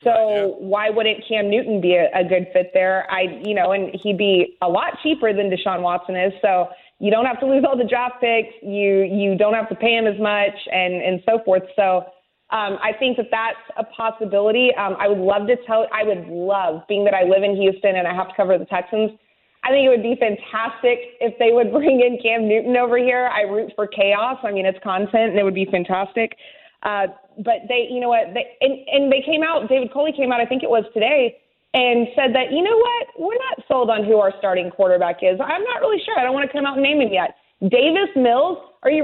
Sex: female